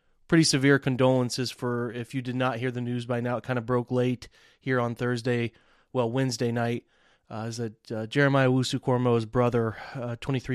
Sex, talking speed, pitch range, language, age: male, 180 wpm, 115-135 Hz, English, 30-49